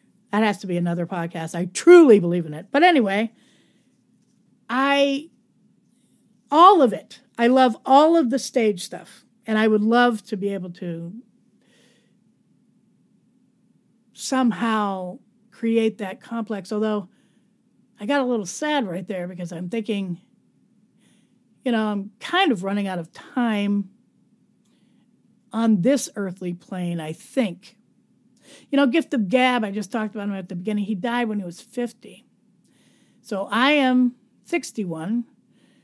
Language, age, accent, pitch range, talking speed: English, 40-59, American, 210-245 Hz, 140 wpm